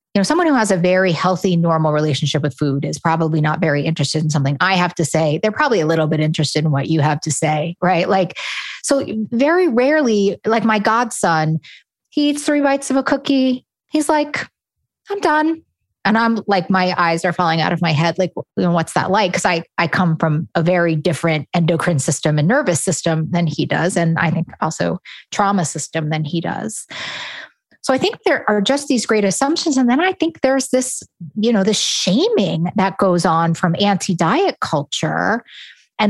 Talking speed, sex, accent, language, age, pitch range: 200 wpm, female, American, English, 30-49, 165-255 Hz